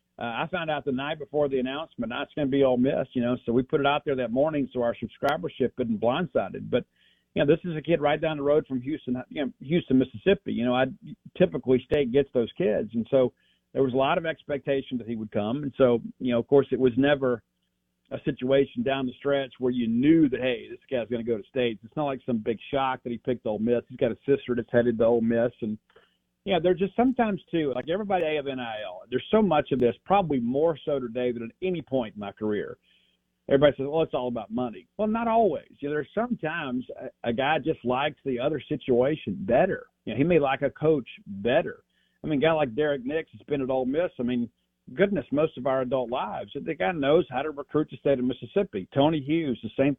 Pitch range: 120-155 Hz